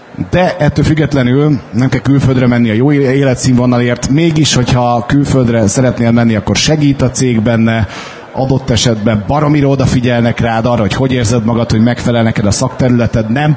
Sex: male